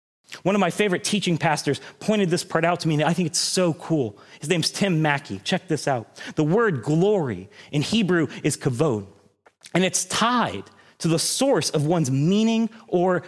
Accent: American